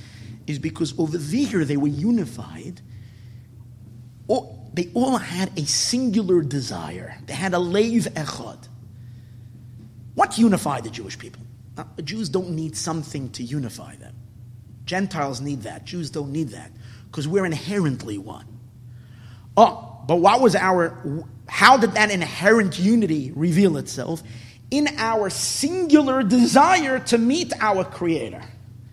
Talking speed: 135 wpm